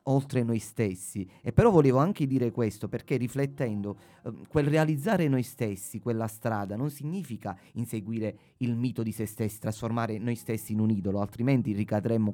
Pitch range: 110-140 Hz